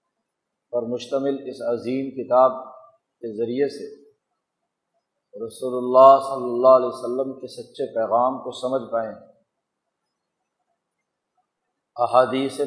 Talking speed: 100 wpm